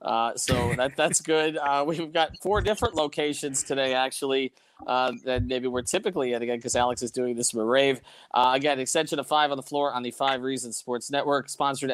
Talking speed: 215 wpm